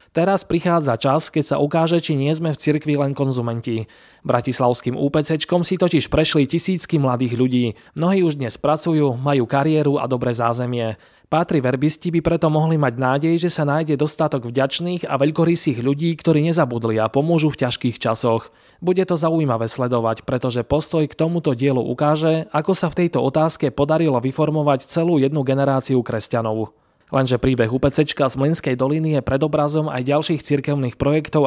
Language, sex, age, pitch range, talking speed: Slovak, male, 20-39, 125-160 Hz, 160 wpm